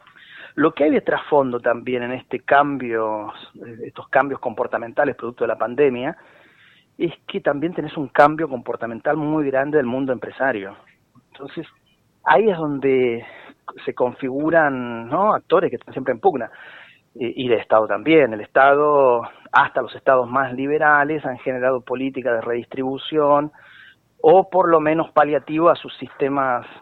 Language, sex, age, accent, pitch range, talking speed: Spanish, male, 40-59, Argentinian, 120-150 Hz, 145 wpm